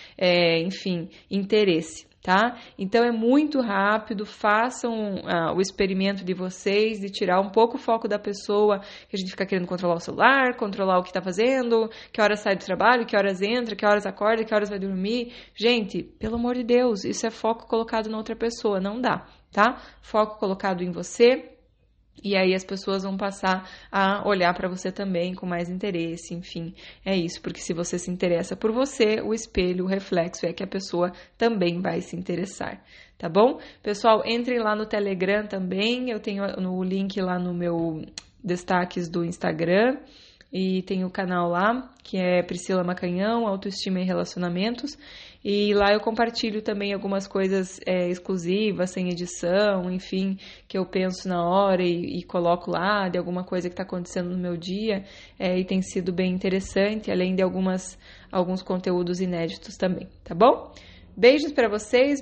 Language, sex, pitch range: Portuguese, female, 180-220 Hz